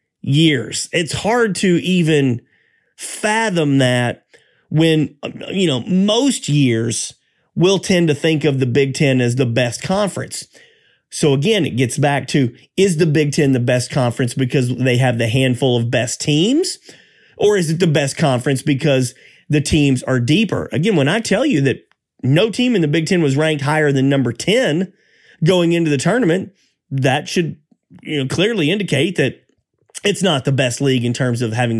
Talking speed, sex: 175 wpm, male